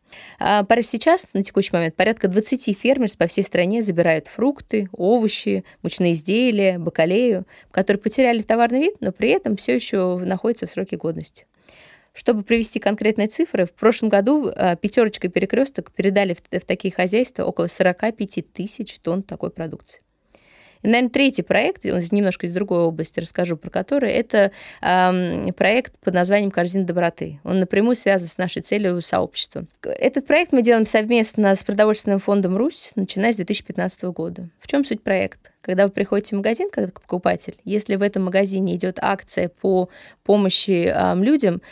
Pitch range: 185-230 Hz